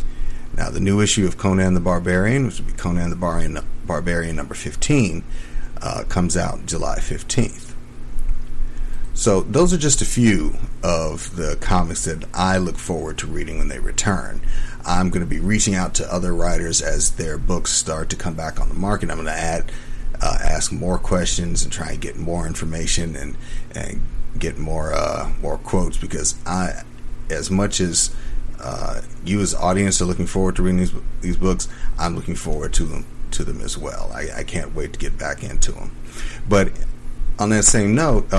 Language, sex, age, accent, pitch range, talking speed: English, male, 40-59, American, 80-95 Hz, 185 wpm